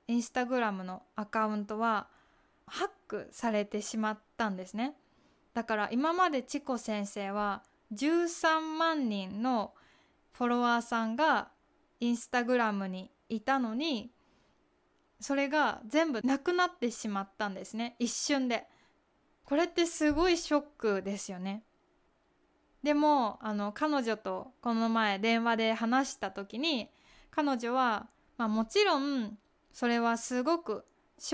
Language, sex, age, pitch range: Japanese, female, 20-39, 220-285 Hz